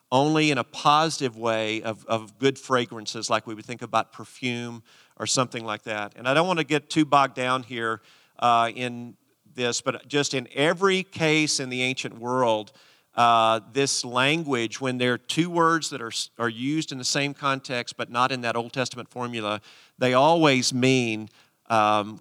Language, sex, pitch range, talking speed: English, male, 115-140 Hz, 185 wpm